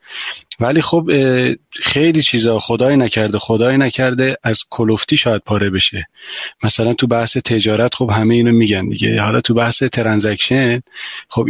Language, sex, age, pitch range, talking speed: Persian, male, 30-49, 115-135 Hz, 140 wpm